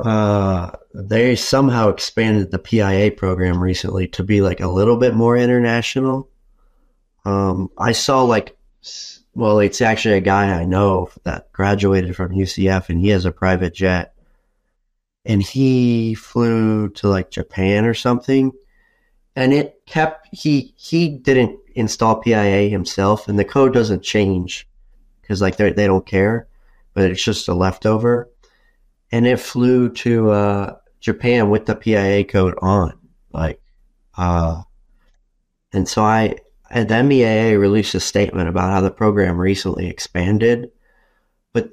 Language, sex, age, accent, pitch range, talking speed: English, male, 30-49, American, 95-115 Hz, 140 wpm